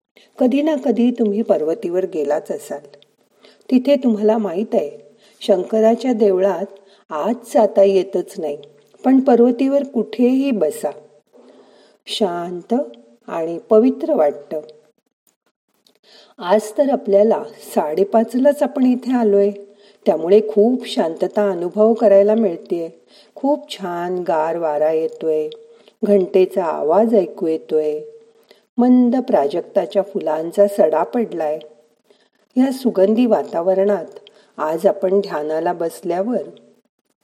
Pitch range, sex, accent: 175-230 Hz, female, native